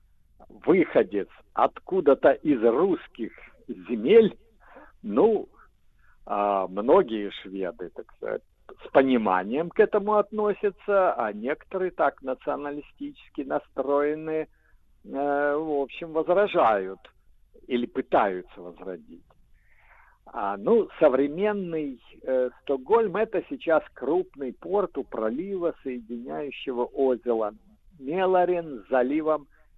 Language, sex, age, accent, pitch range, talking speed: Russian, male, 60-79, native, 115-180 Hz, 80 wpm